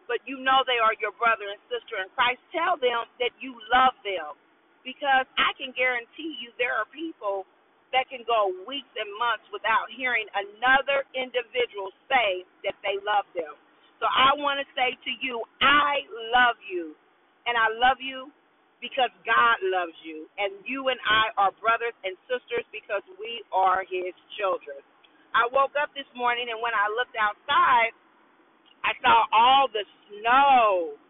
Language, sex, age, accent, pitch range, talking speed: English, female, 40-59, American, 240-345 Hz, 165 wpm